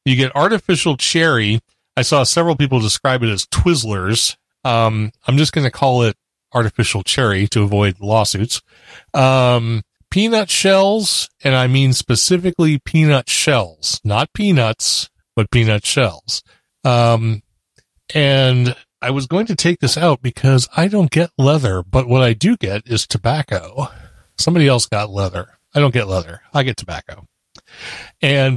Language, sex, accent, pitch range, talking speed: English, male, American, 110-145 Hz, 150 wpm